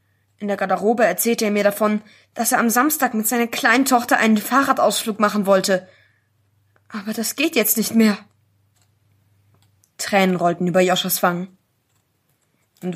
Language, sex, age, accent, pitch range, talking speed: German, female, 20-39, German, 175-235 Hz, 145 wpm